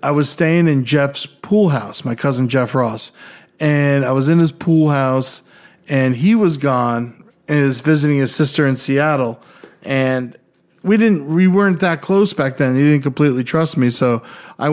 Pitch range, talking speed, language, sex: 130-165 Hz, 185 wpm, English, male